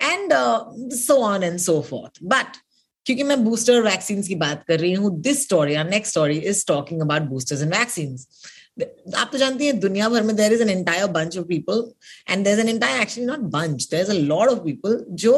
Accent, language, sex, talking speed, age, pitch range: native, Hindi, female, 110 wpm, 20-39, 165-230 Hz